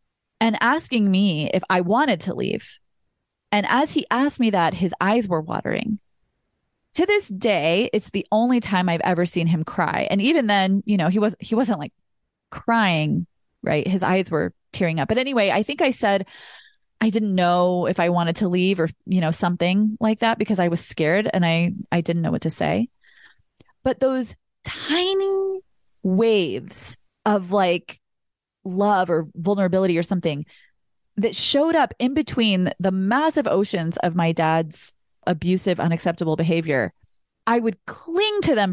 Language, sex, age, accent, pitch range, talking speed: English, female, 30-49, American, 170-225 Hz, 170 wpm